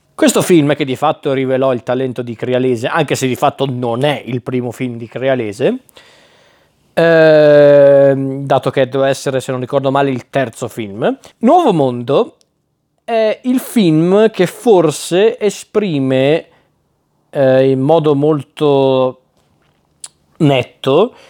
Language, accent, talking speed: Italian, native, 130 wpm